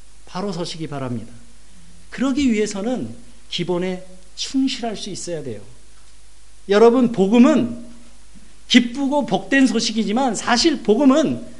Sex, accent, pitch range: male, native, 180-255 Hz